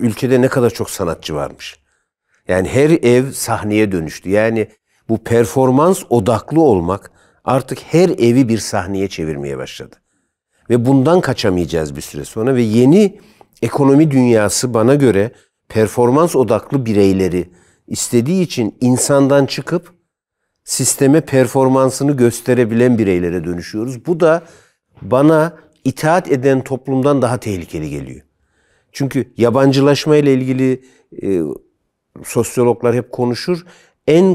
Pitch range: 105-140 Hz